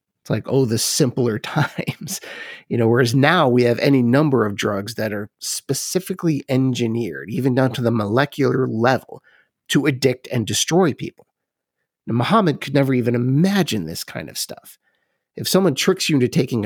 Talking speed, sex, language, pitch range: 170 wpm, male, English, 115-145 Hz